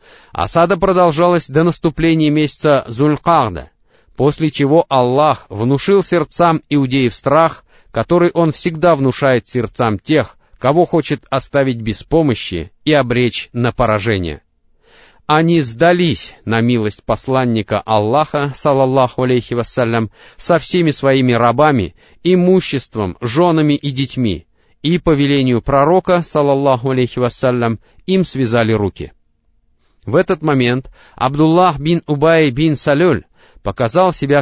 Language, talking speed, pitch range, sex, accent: Russian, 115 wpm, 115-155 Hz, male, native